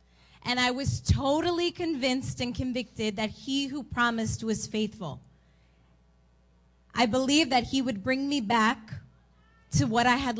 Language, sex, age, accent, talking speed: English, female, 20-39, American, 145 wpm